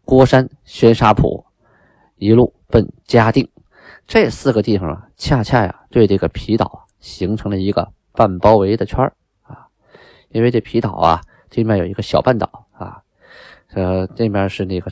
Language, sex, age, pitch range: Chinese, male, 20-39, 95-135 Hz